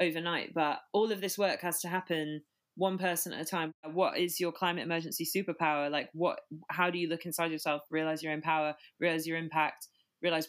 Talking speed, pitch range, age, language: 205 wpm, 155-175 Hz, 20-39, English